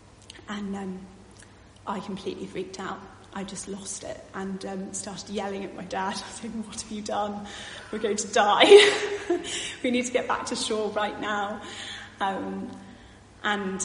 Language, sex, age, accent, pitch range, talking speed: English, female, 30-49, British, 185-220 Hz, 170 wpm